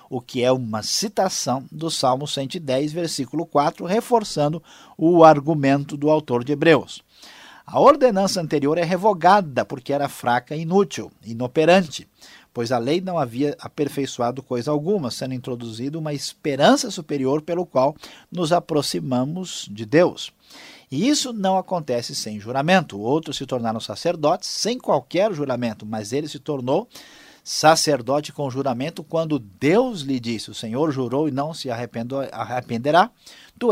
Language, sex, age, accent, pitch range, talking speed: Portuguese, male, 50-69, Brazilian, 130-175 Hz, 140 wpm